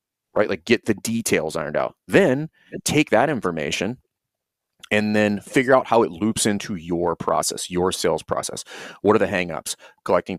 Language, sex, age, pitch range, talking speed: English, male, 30-49, 90-115 Hz, 165 wpm